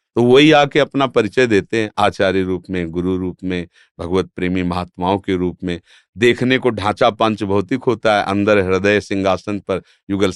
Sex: male